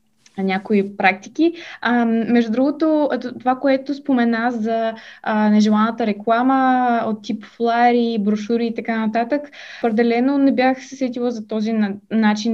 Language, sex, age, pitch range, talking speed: Bulgarian, female, 20-39, 215-255 Hz, 130 wpm